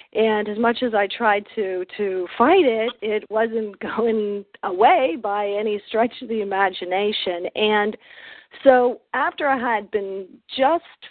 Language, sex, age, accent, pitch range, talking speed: English, female, 40-59, American, 195-235 Hz, 145 wpm